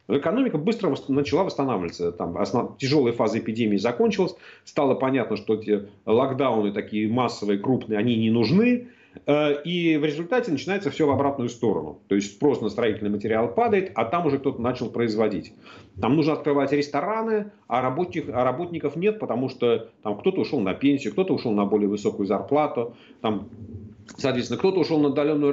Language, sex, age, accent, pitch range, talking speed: Russian, male, 40-59, native, 110-165 Hz, 160 wpm